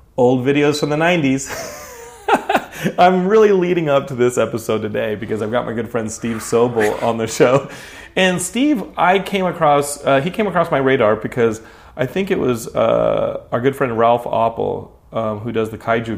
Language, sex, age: English, male, 30-49